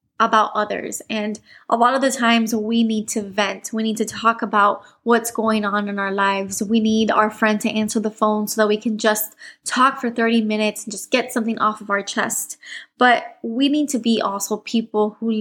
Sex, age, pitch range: female, 20-39, 210-240 Hz